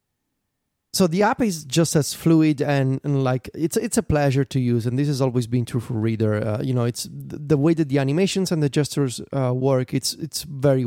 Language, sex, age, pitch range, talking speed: English, male, 30-49, 135-175 Hz, 230 wpm